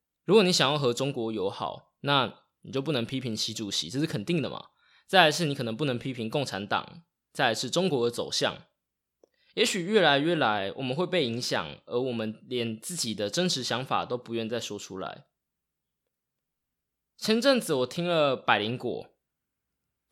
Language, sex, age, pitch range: Chinese, male, 20-39, 120-175 Hz